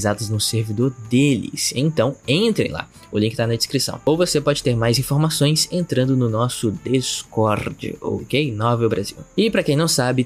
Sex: male